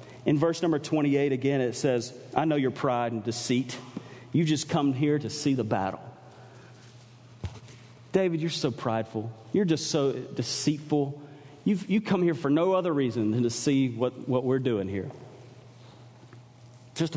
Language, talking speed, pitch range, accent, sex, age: English, 155 wpm, 120-160 Hz, American, male, 40-59